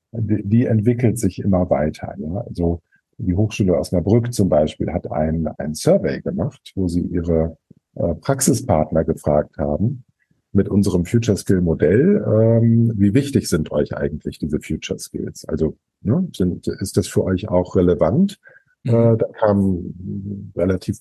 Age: 50-69